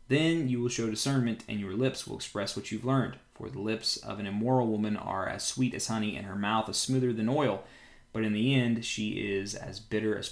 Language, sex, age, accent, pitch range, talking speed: English, male, 20-39, American, 95-115 Hz, 240 wpm